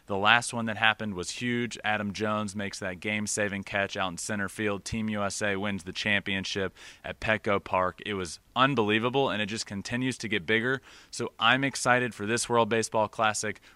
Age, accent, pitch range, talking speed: 30-49, American, 95-120 Hz, 190 wpm